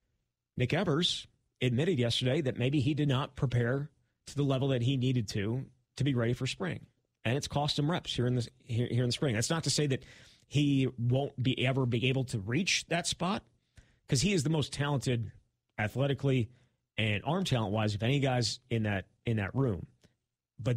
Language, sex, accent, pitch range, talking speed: English, male, American, 120-140 Hz, 200 wpm